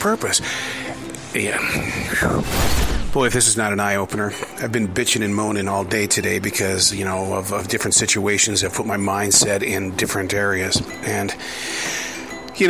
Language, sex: English, male